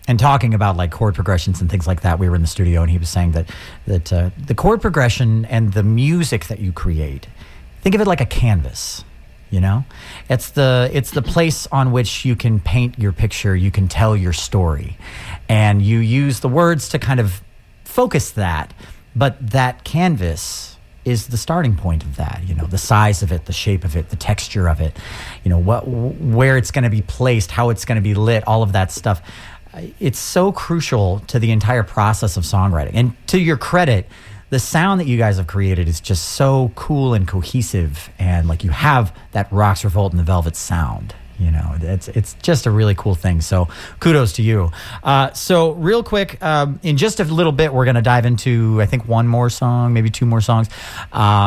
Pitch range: 95-130 Hz